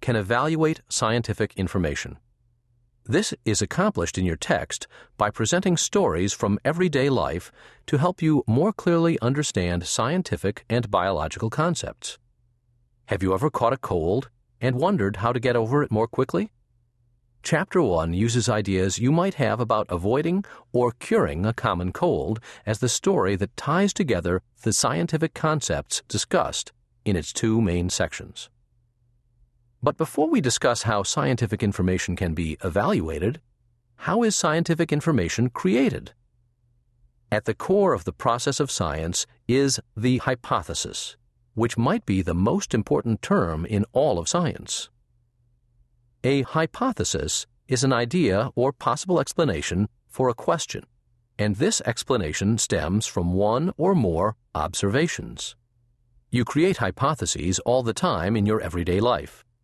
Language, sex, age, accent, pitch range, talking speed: English, male, 40-59, American, 100-130 Hz, 140 wpm